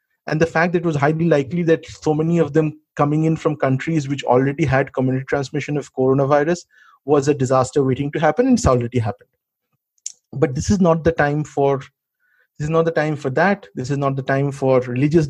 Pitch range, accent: 130-160 Hz, Indian